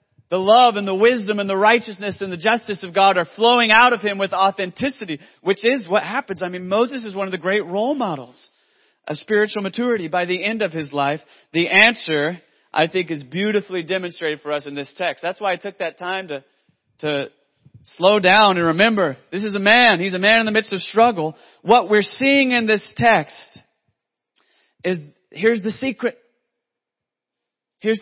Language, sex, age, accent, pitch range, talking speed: English, male, 40-59, American, 150-210 Hz, 195 wpm